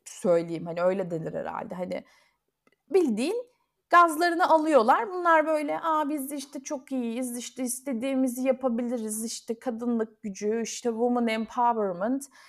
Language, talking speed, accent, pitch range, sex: Turkish, 115 wpm, native, 195-265 Hz, female